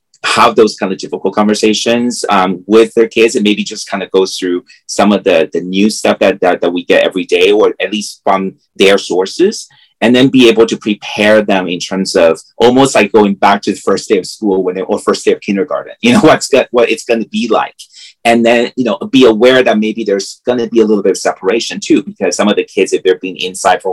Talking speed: 250 wpm